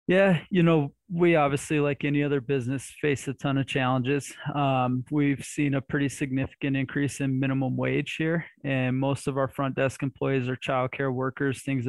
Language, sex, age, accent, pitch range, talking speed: English, male, 20-39, American, 125-140 Hz, 180 wpm